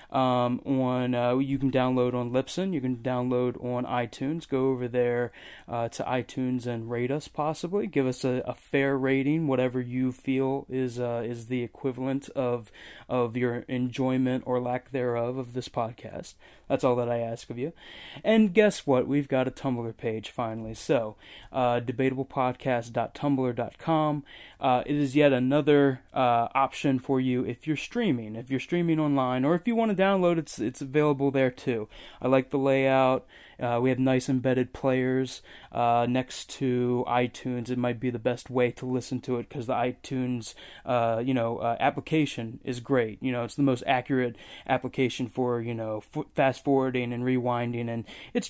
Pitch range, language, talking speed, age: 120-140 Hz, English, 175 wpm, 20-39